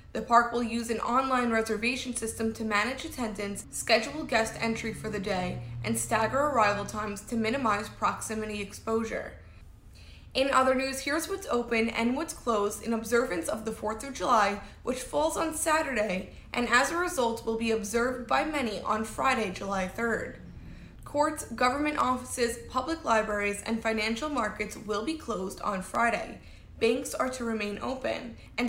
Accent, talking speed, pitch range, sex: American, 160 wpm, 220-260 Hz, female